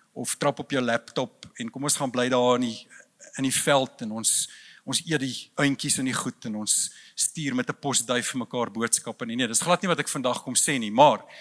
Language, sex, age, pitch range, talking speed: English, male, 50-69, 145-205 Hz, 245 wpm